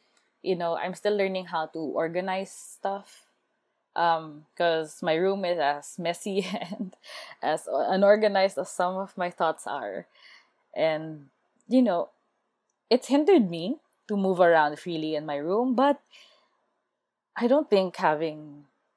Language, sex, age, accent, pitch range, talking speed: Filipino, female, 20-39, native, 160-210 Hz, 135 wpm